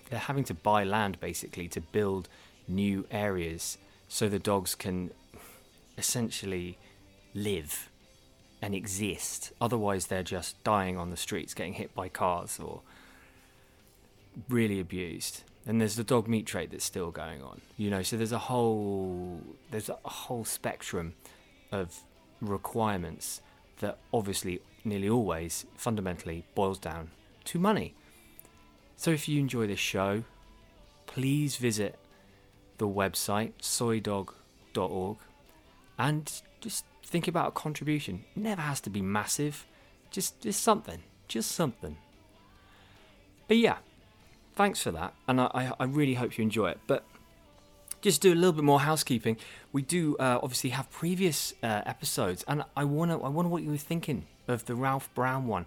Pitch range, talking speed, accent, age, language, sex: 95-130 Hz, 145 wpm, British, 20-39, English, male